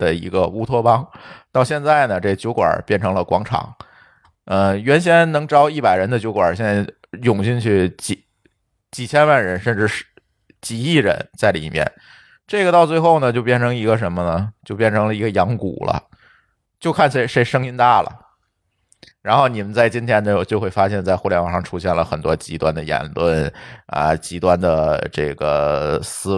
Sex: male